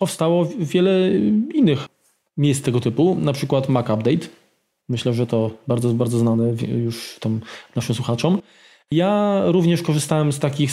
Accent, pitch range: native, 125-160 Hz